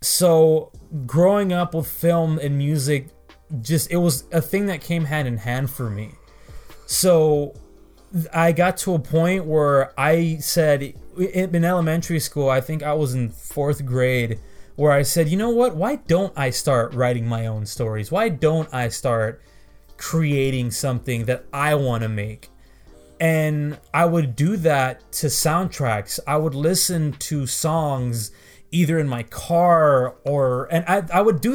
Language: English